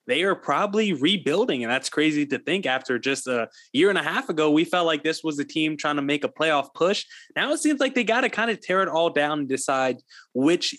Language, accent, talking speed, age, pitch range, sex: English, American, 255 wpm, 20-39, 140-190 Hz, male